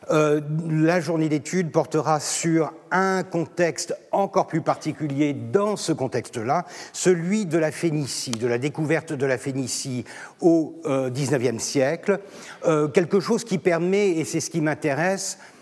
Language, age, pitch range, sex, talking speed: French, 50-69, 135-170 Hz, male, 145 wpm